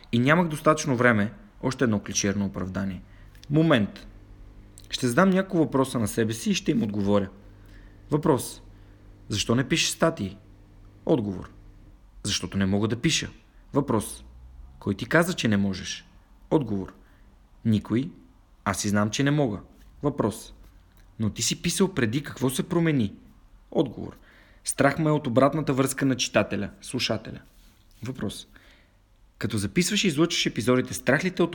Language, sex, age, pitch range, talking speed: Bulgarian, male, 40-59, 100-140 Hz, 145 wpm